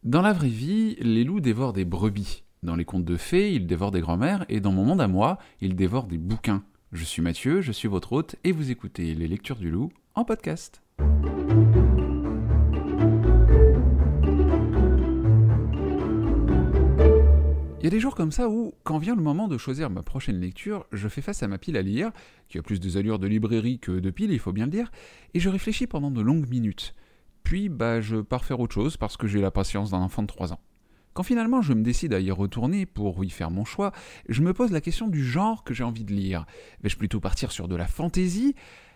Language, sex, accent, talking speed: French, male, French, 215 wpm